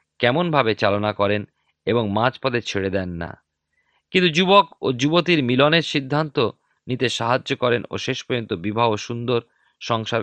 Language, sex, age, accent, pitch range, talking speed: Bengali, male, 40-59, native, 110-160 Hz, 135 wpm